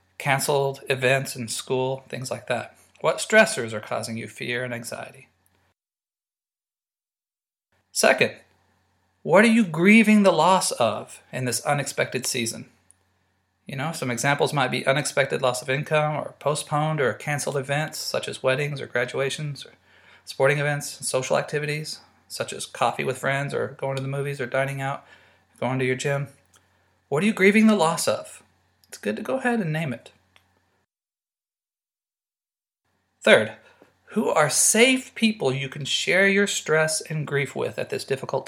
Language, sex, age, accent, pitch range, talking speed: English, male, 40-59, American, 125-155 Hz, 155 wpm